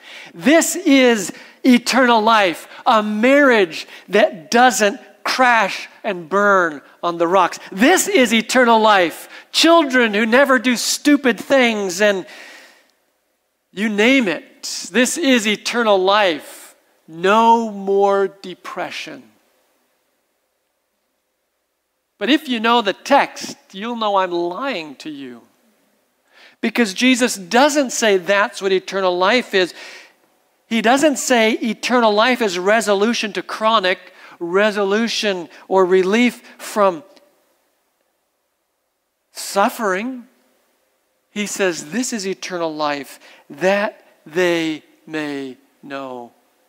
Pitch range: 190-255 Hz